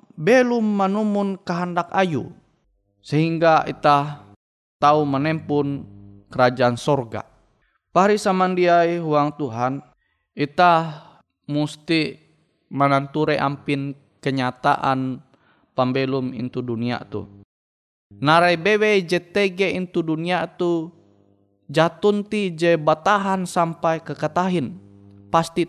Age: 20-39